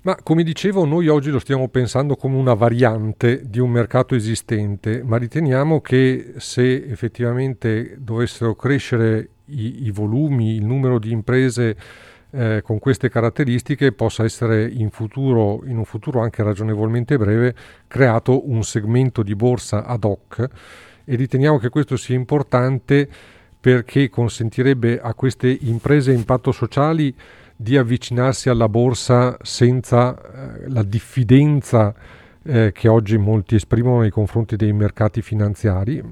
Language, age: Italian, 40-59